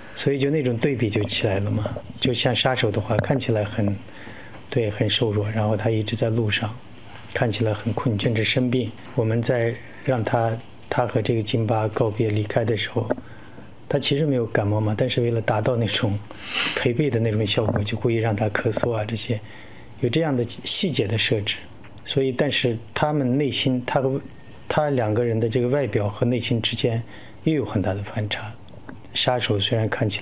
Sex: male